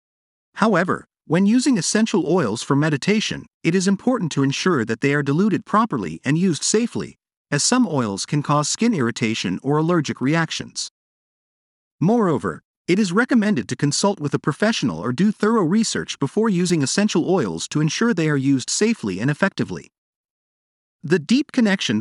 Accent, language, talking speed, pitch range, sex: American, English, 160 wpm, 145-210 Hz, male